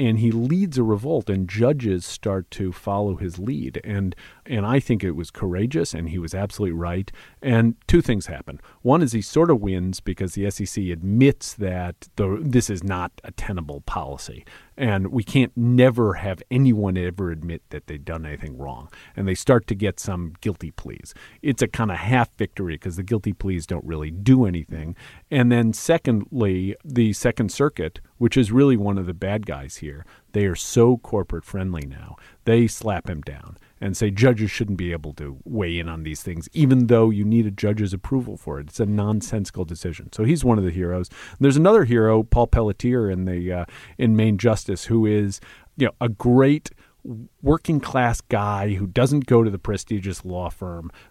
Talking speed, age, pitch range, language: 195 wpm, 50-69, 90-120 Hz, English